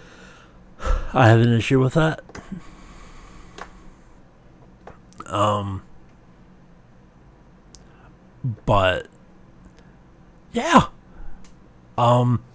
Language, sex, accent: English, male, American